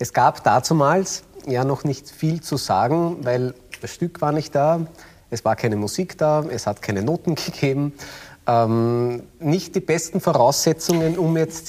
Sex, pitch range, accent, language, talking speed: male, 115-150 Hz, Austrian, German, 165 wpm